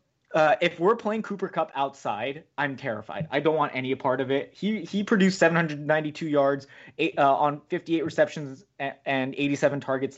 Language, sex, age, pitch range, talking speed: English, male, 20-39, 130-160 Hz, 165 wpm